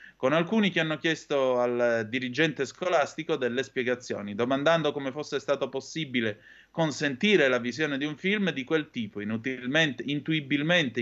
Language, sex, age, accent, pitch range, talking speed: Italian, male, 30-49, native, 120-160 Hz, 140 wpm